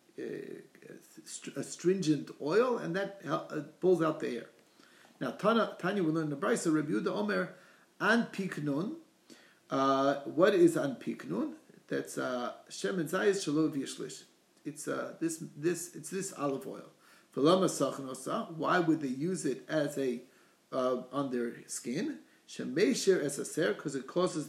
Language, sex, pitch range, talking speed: English, male, 140-220 Hz, 130 wpm